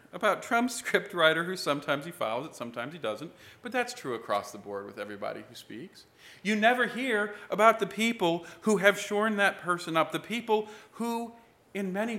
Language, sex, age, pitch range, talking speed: English, male, 40-59, 155-215 Hz, 185 wpm